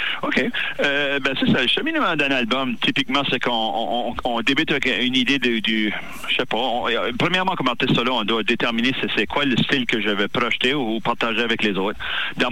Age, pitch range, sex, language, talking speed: 40-59, 105-125 Hz, male, French, 220 wpm